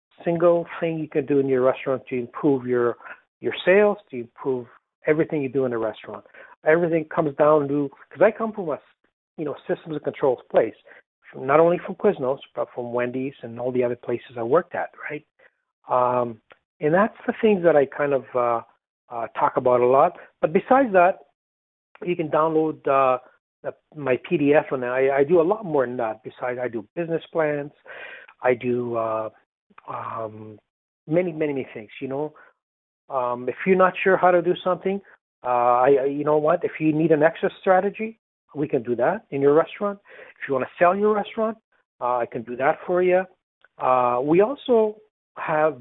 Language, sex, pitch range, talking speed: English, male, 125-175 Hz, 195 wpm